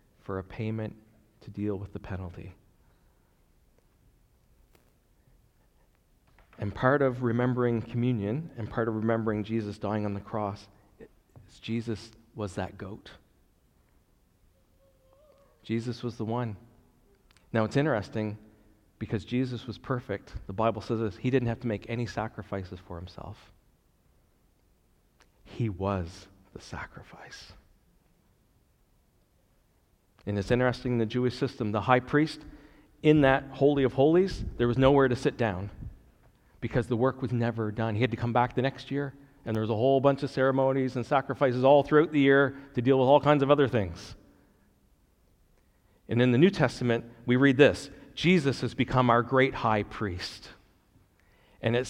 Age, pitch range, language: 40-59, 105-135 Hz, English